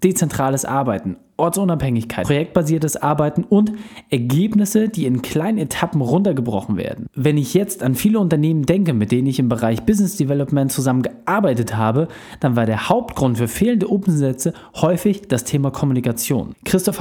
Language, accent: German, German